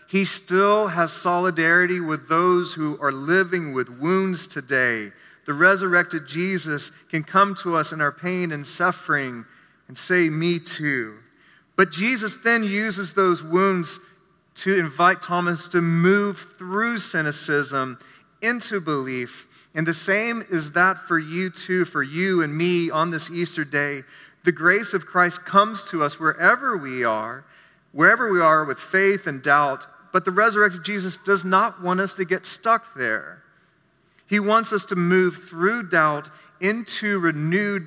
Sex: male